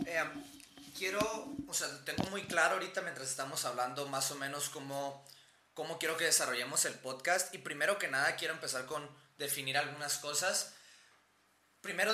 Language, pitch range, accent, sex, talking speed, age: Spanish, 135-180 Hz, Mexican, male, 160 wpm, 20-39